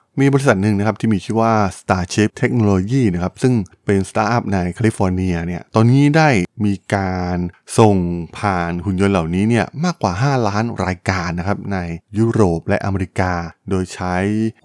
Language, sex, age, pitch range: Thai, male, 20-39, 90-115 Hz